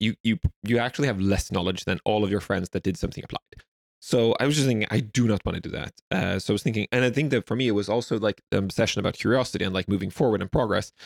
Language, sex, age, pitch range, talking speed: English, male, 20-39, 100-115 Hz, 290 wpm